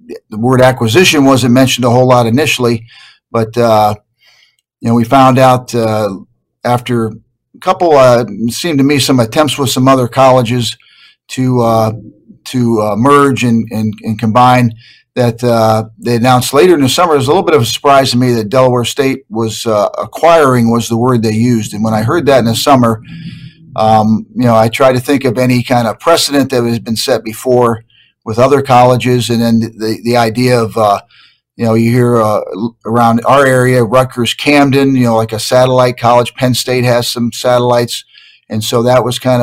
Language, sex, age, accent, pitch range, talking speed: English, male, 50-69, American, 115-130 Hz, 200 wpm